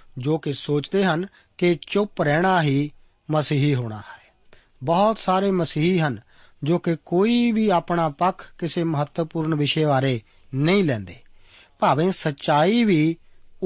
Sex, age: male, 40-59